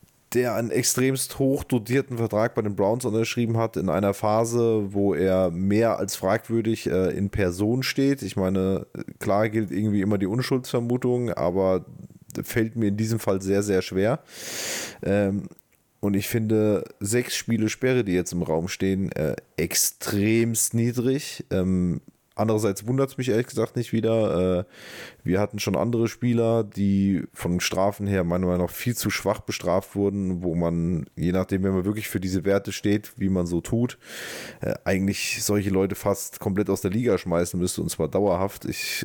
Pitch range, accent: 95-115 Hz, German